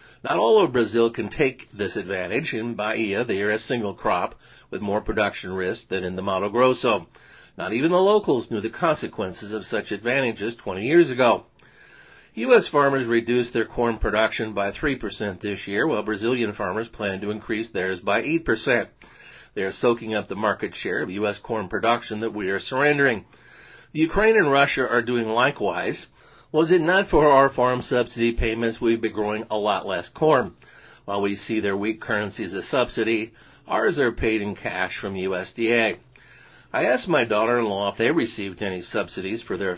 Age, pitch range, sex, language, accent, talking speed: 50-69, 105-130 Hz, male, English, American, 185 wpm